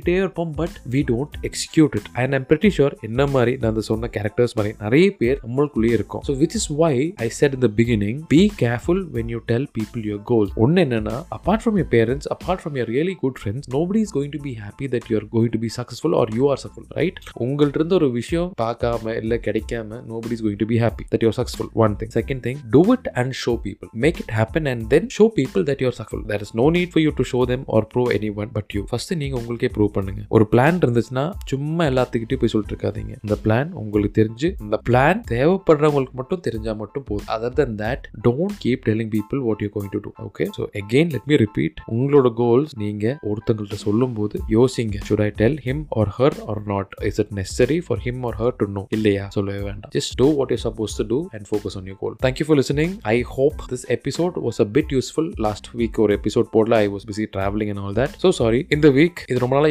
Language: Tamil